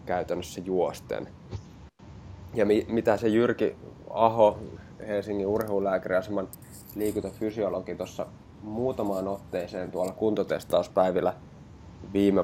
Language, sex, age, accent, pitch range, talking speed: Finnish, male, 20-39, native, 90-105 Hz, 80 wpm